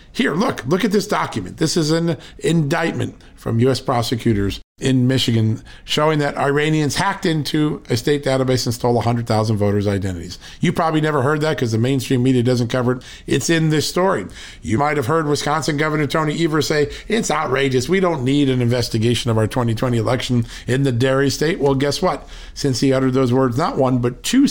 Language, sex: English, male